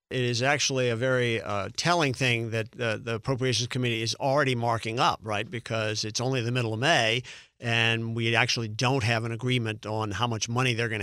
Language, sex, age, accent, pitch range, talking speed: English, male, 50-69, American, 115-135 Hz, 205 wpm